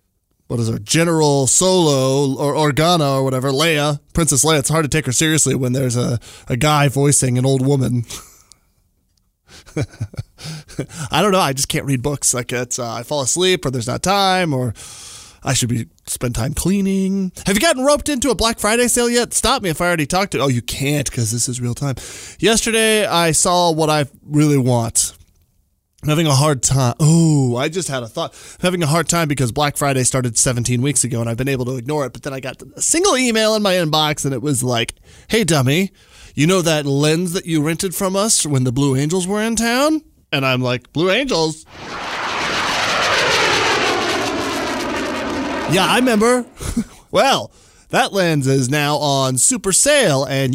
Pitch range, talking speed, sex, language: 130-190 Hz, 195 wpm, male, English